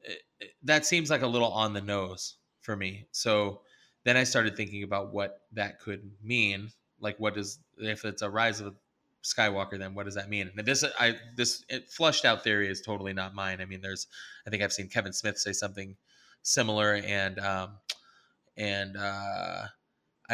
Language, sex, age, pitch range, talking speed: English, male, 20-39, 100-115 Hz, 190 wpm